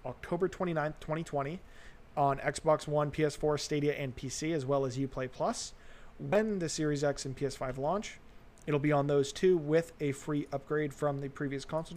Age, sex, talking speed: 30-49, male, 175 wpm